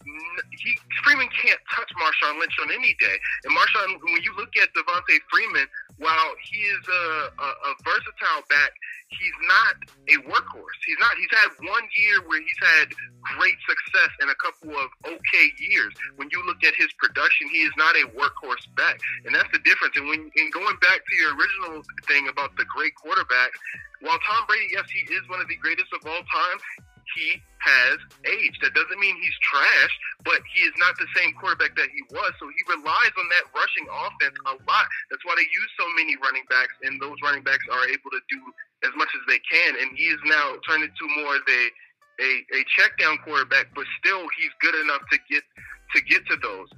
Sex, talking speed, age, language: male, 205 wpm, 30-49, English